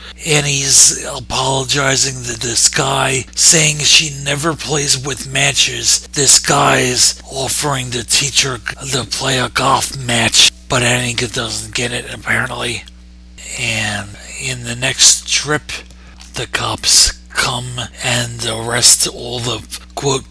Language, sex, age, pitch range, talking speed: English, male, 50-69, 100-130 Hz, 120 wpm